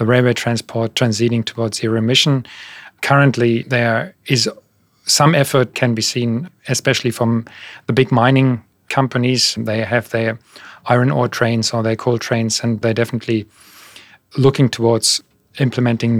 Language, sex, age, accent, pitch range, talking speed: English, male, 40-59, German, 115-130 Hz, 135 wpm